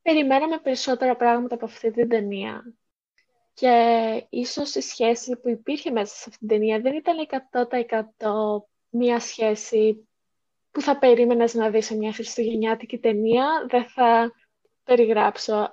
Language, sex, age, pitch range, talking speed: Greek, female, 20-39, 215-260 Hz, 135 wpm